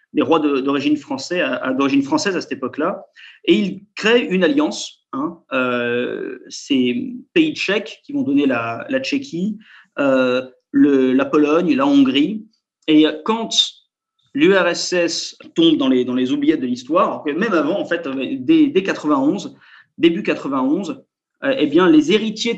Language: French